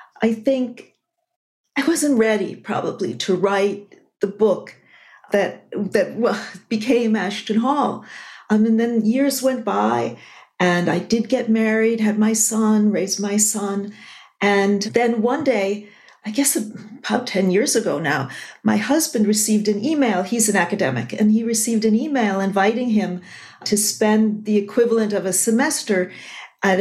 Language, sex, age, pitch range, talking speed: English, female, 50-69, 200-255 Hz, 150 wpm